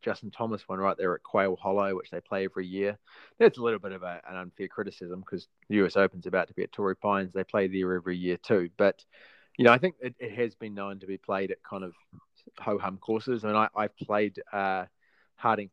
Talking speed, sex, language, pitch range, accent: 235 wpm, male, English, 95-110 Hz, Australian